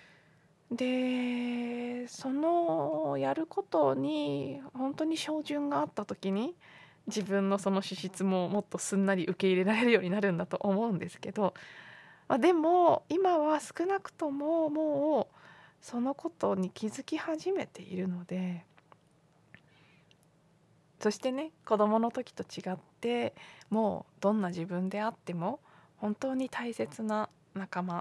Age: 20-39